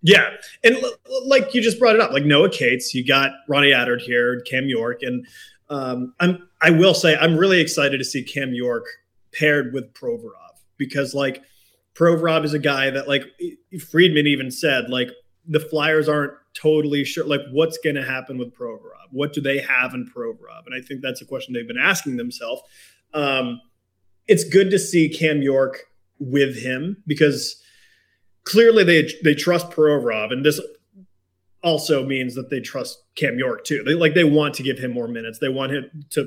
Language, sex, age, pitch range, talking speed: English, male, 30-49, 130-170 Hz, 190 wpm